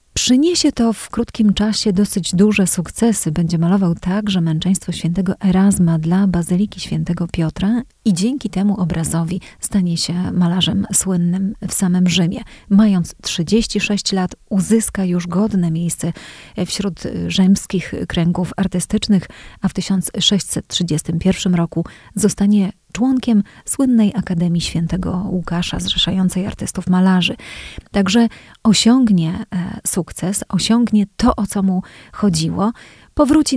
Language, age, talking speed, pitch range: Polish, 30-49, 115 wpm, 180-210 Hz